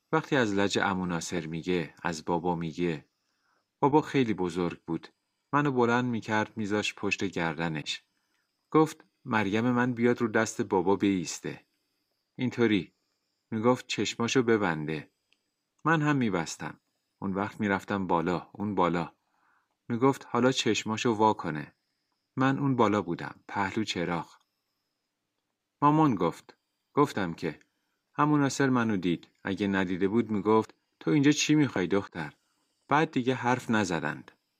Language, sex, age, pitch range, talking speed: Persian, male, 30-49, 95-130 Hz, 120 wpm